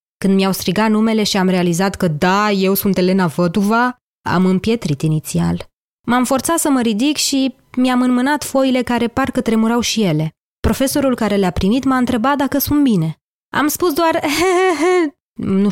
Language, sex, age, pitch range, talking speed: Romanian, female, 20-39, 185-245 Hz, 170 wpm